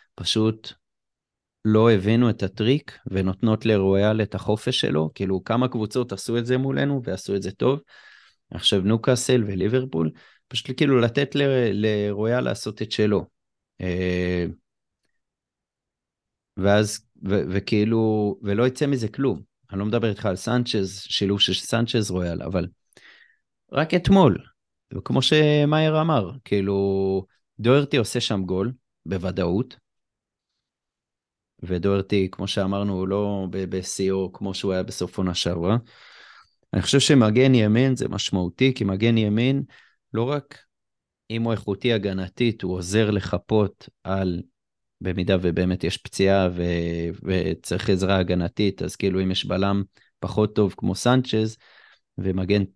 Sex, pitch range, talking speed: male, 95-120 Hz, 125 wpm